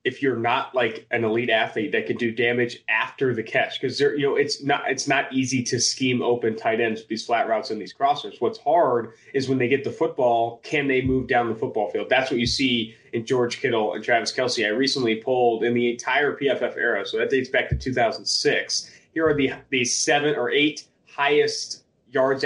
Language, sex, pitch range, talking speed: English, male, 120-145 Hz, 220 wpm